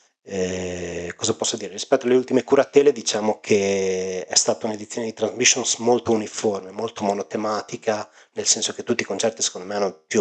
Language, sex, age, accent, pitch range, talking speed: Italian, male, 30-49, native, 95-115 Hz, 170 wpm